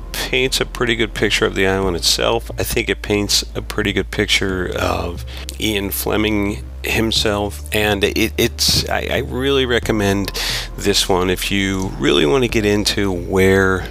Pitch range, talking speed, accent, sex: 85-105 Hz, 160 wpm, American, male